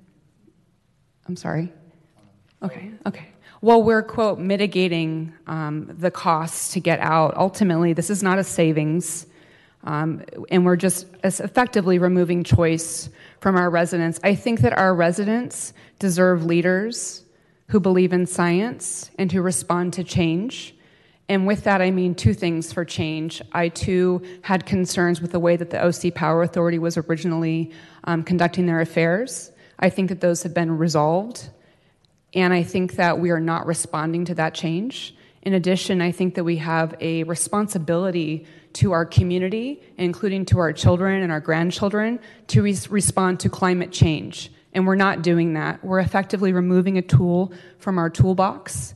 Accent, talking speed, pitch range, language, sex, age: American, 155 wpm, 165-190 Hz, English, female, 30-49